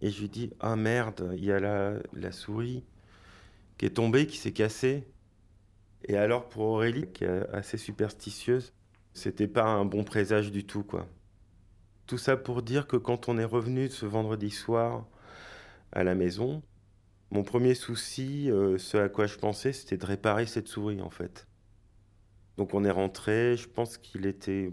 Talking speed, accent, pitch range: 180 wpm, French, 95-110 Hz